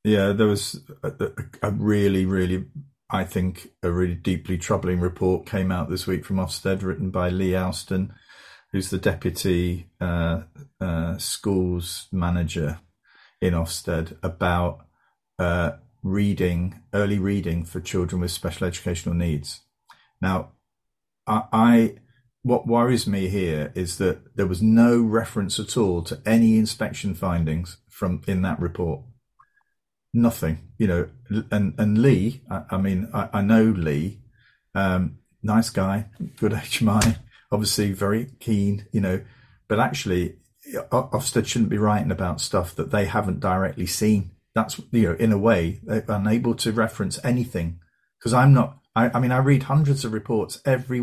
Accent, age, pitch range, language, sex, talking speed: British, 40-59, 90-115 Hz, English, male, 150 wpm